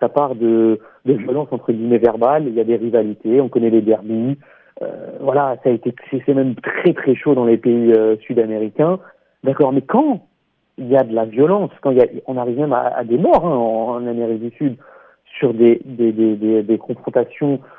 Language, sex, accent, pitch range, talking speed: French, male, French, 115-140 Hz, 220 wpm